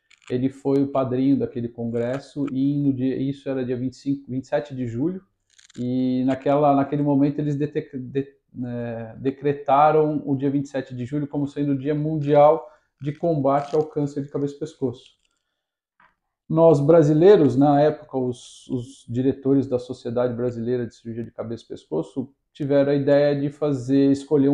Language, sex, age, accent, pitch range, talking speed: Portuguese, male, 50-69, Brazilian, 125-145 Hz, 160 wpm